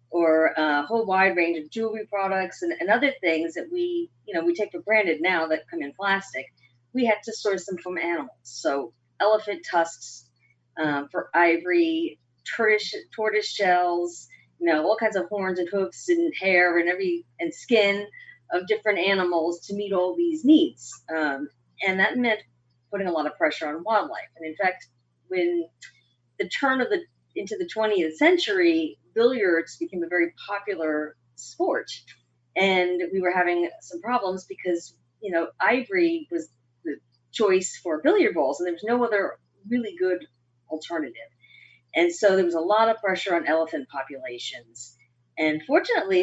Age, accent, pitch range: 40-59, American, 155-225 Hz